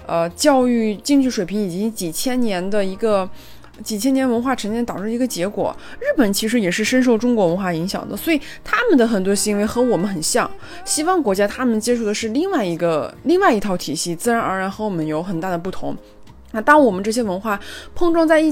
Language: Chinese